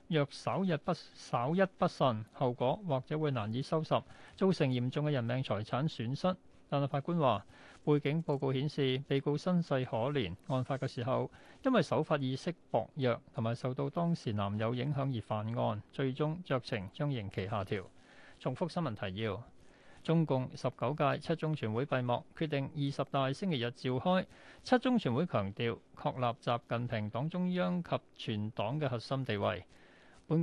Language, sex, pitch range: Chinese, male, 120-155 Hz